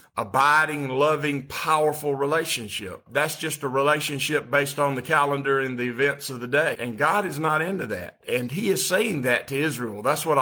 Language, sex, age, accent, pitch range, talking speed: English, male, 50-69, American, 140-170 Hz, 190 wpm